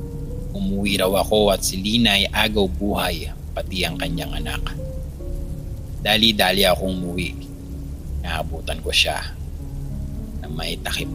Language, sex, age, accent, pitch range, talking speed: English, male, 30-49, Filipino, 75-100 Hz, 115 wpm